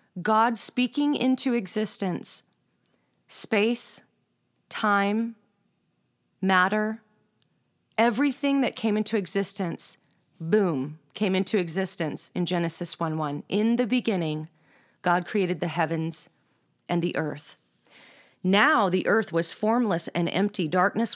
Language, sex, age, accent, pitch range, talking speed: English, female, 30-49, American, 170-215 Hz, 105 wpm